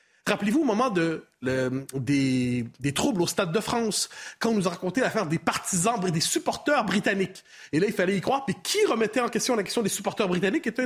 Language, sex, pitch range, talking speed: French, male, 165-235 Hz, 225 wpm